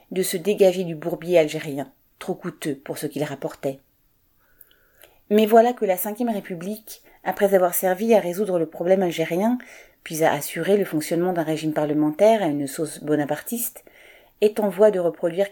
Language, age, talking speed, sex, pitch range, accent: French, 40-59, 165 wpm, female, 160-205 Hz, French